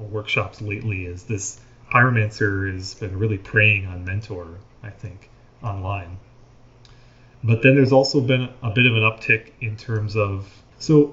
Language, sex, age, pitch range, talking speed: English, male, 30-49, 110-130 Hz, 150 wpm